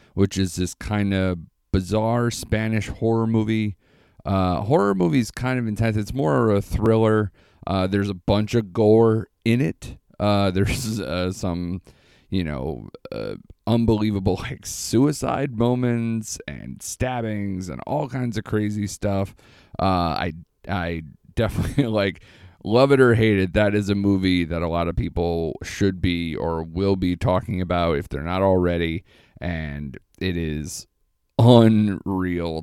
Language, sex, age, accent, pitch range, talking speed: English, male, 30-49, American, 85-105 Hz, 150 wpm